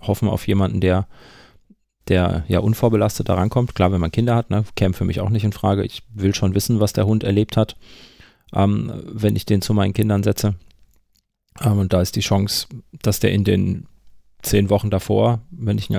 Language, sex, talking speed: German, male, 205 wpm